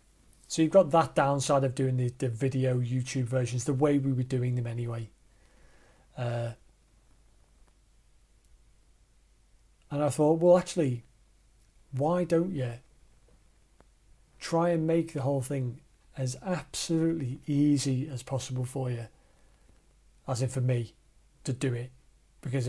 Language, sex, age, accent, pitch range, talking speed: English, male, 40-59, British, 125-155 Hz, 130 wpm